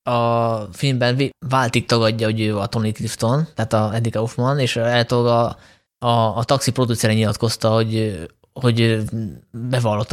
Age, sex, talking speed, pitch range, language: 20-39, male, 140 wpm, 115-130 Hz, Hungarian